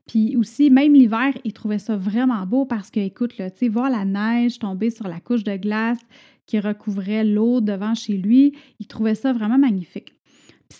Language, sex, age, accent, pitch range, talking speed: French, female, 30-49, Canadian, 215-275 Hz, 195 wpm